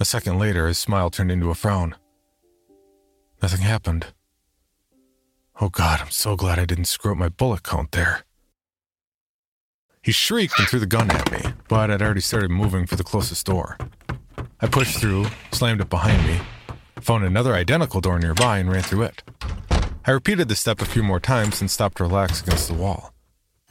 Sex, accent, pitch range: male, American, 85-115 Hz